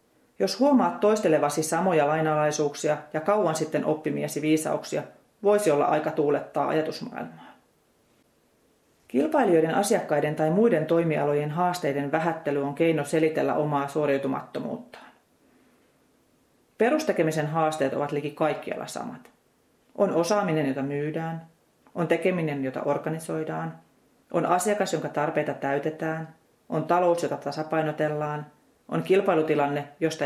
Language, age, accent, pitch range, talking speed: Finnish, 30-49, native, 145-170 Hz, 105 wpm